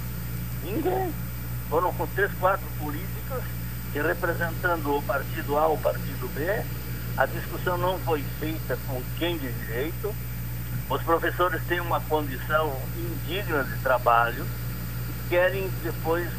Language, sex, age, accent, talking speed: Portuguese, male, 60-79, Brazilian, 130 wpm